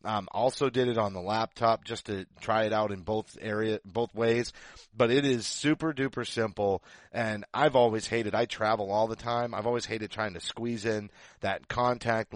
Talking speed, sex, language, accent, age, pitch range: 210 wpm, male, English, American, 30-49, 105-125 Hz